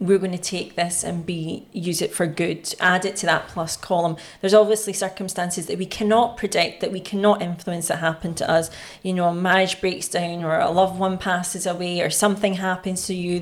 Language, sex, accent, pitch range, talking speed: English, female, British, 175-200 Hz, 220 wpm